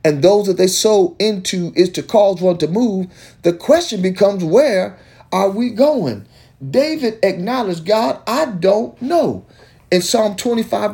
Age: 40-59